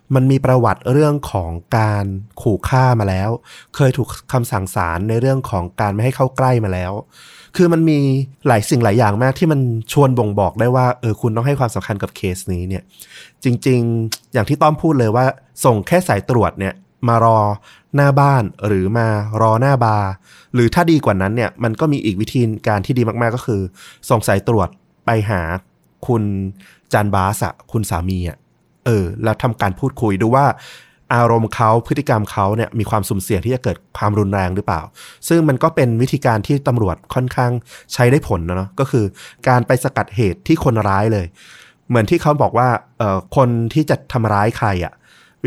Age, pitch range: 20-39, 100-130 Hz